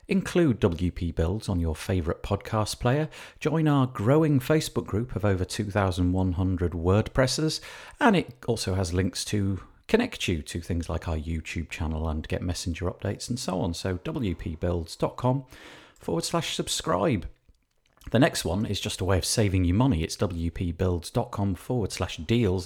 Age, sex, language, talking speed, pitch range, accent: 40-59, male, English, 155 wpm, 90-130 Hz, British